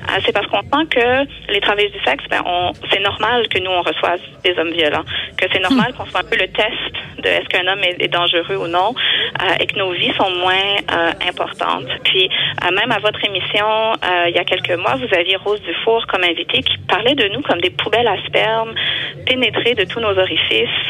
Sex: female